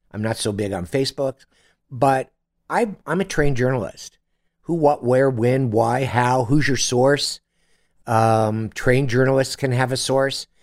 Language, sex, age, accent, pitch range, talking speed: English, male, 60-79, American, 95-130 Hz, 160 wpm